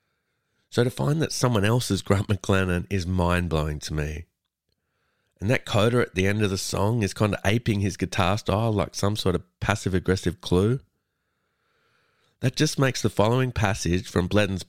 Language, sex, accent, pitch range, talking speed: English, male, Australian, 90-115 Hz, 170 wpm